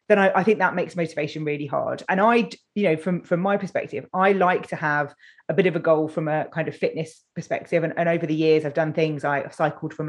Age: 30-49